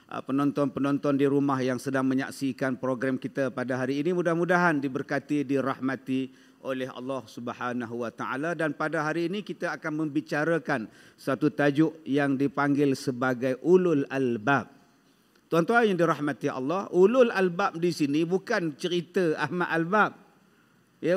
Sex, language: male, Malay